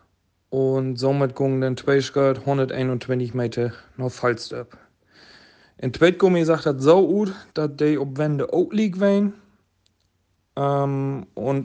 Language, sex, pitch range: German, male, 135-175 Hz